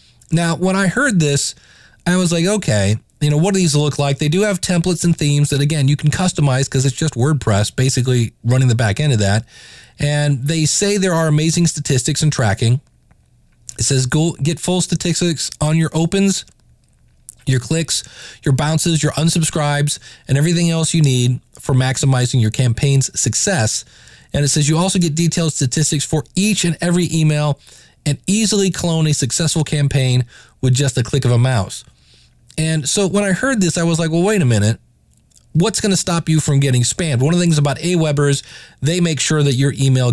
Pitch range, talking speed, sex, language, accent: 130-165 Hz, 195 wpm, male, English, American